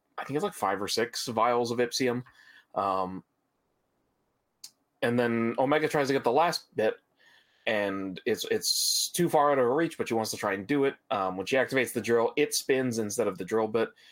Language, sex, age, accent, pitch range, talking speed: English, male, 30-49, American, 105-125 Hz, 210 wpm